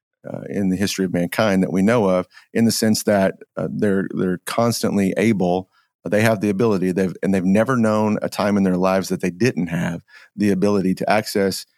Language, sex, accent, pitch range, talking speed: English, male, American, 95-110 Hz, 215 wpm